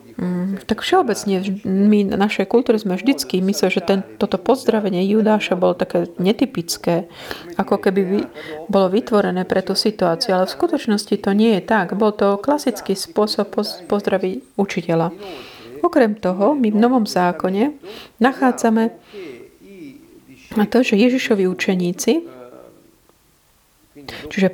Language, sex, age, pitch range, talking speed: Slovak, female, 30-49, 190-230 Hz, 130 wpm